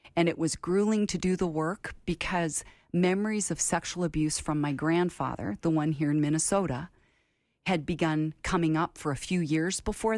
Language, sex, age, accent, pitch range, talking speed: English, female, 40-59, American, 145-175 Hz, 175 wpm